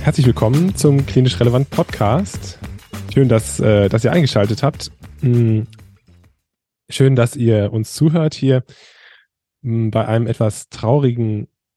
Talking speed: 110 wpm